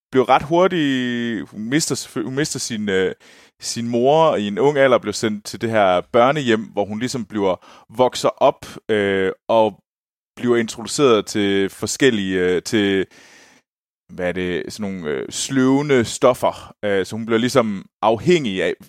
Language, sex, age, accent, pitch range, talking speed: Danish, male, 30-49, native, 100-135 Hz, 155 wpm